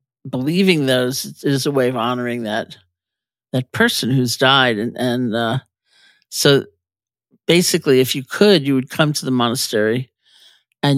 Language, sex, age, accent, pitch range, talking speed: English, male, 50-69, American, 125-145 Hz, 150 wpm